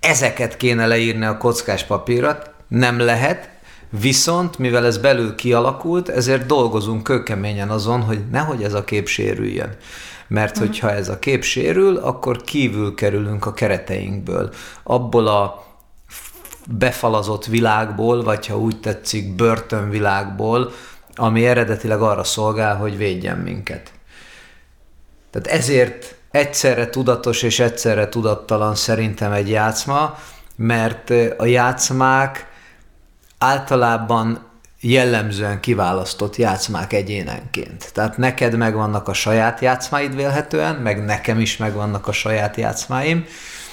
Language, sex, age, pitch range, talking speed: Hungarian, male, 30-49, 105-125 Hz, 110 wpm